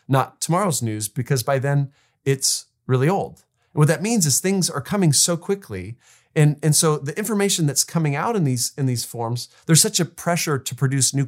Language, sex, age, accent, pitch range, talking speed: English, male, 30-49, American, 120-155 Hz, 205 wpm